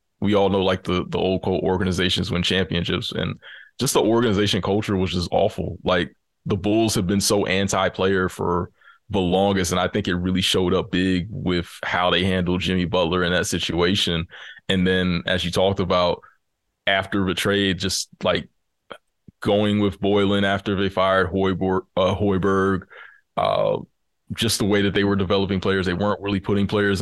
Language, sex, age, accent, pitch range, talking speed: English, male, 20-39, American, 90-100 Hz, 180 wpm